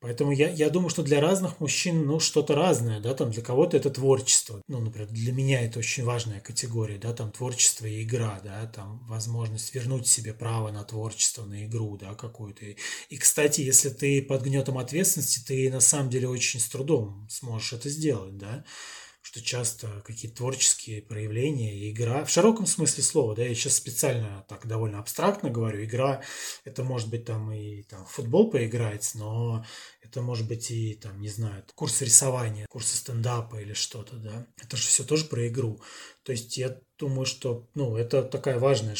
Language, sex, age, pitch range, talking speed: Russian, male, 20-39, 110-135 Hz, 185 wpm